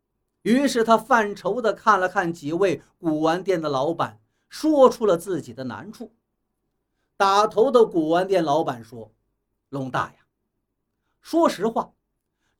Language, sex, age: Chinese, male, 50-69